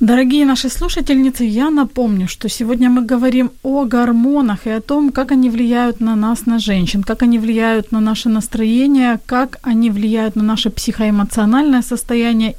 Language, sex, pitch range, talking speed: Ukrainian, female, 210-255 Hz, 160 wpm